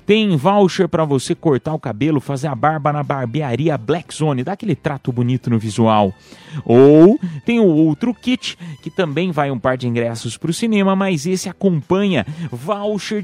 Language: Portuguese